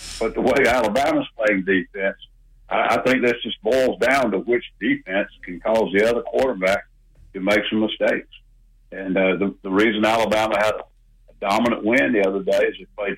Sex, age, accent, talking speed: male, 60-79, American, 185 wpm